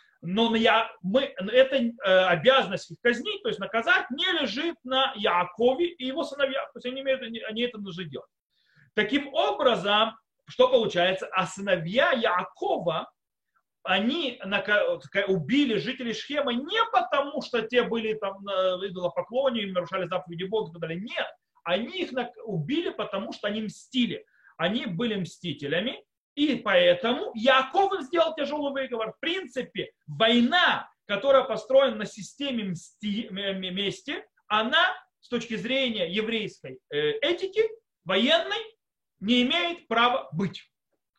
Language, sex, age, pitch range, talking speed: Russian, male, 30-49, 200-280 Hz, 135 wpm